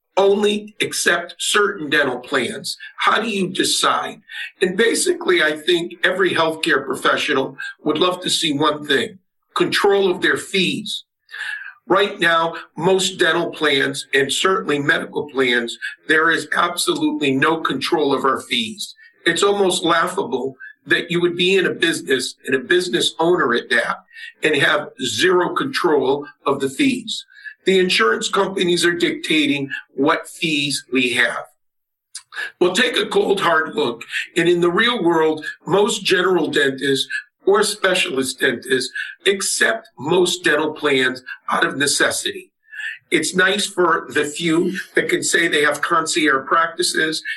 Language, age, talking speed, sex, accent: English, 50-69, 140 wpm, male, American